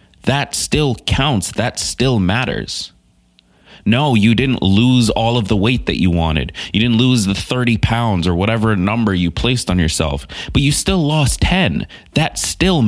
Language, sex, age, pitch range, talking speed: English, male, 20-39, 90-120 Hz, 170 wpm